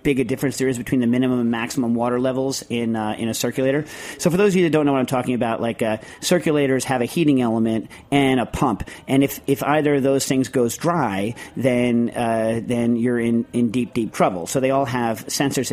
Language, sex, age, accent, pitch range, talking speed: English, male, 40-59, American, 115-135 Hz, 235 wpm